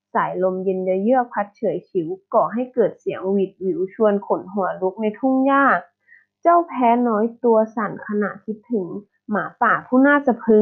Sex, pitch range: female, 200-255 Hz